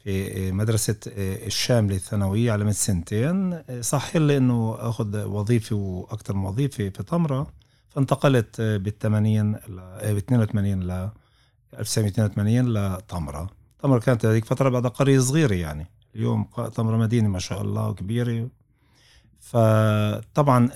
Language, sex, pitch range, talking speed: Arabic, male, 100-120 Hz, 100 wpm